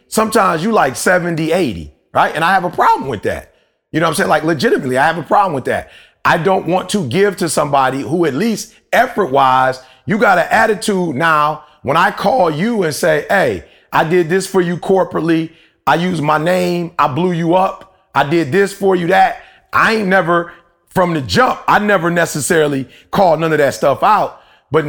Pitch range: 155-205 Hz